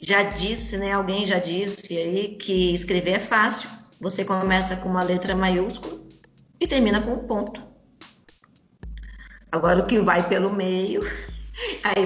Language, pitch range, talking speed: Portuguese, 180-225 Hz, 145 wpm